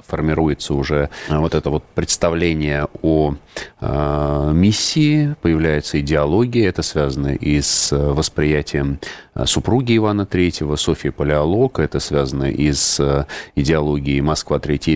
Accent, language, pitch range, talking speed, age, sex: native, Russian, 75-90 Hz, 110 wpm, 30-49, male